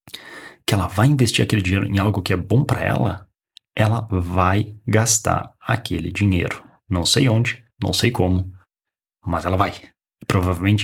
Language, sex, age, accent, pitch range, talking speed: Portuguese, male, 30-49, Brazilian, 95-115 Hz, 155 wpm